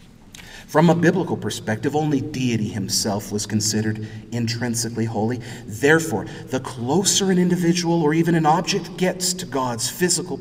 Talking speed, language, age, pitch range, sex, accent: 140 wpm, English, 40-59, 125-175 Hz, male, American